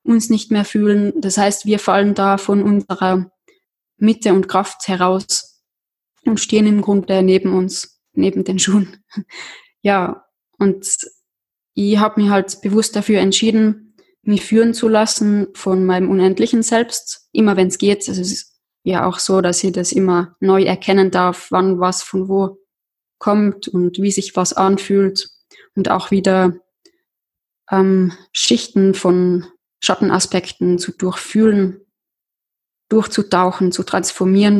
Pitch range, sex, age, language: 185-205 Hz, female, 20-39, German